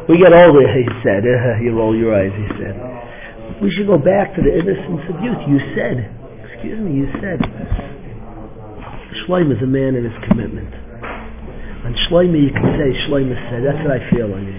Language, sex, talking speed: English, male, 195 wpm